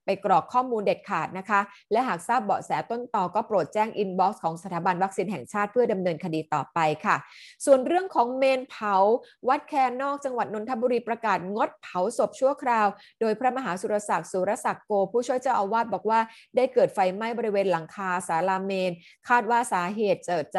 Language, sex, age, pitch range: Thai, female, 20-39, 190-240 Hz